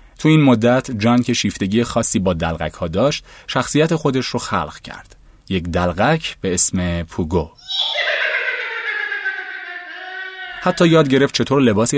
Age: 30-49